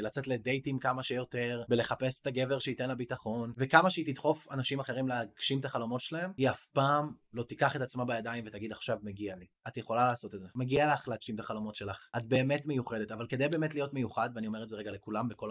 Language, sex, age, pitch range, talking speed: Hebrew, male, 20-39, 130-210 Hz, 220 wpm